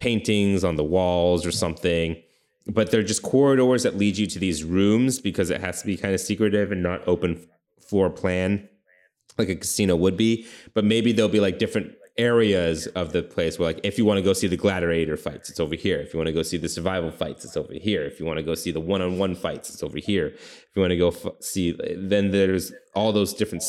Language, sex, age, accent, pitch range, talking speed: English, male, 30-49, American, 85-110 Hz, 225 wpm